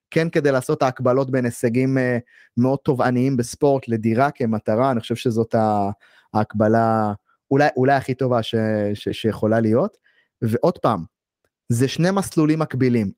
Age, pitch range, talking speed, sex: 30-49, 120-170 Hz, 135 wpm, male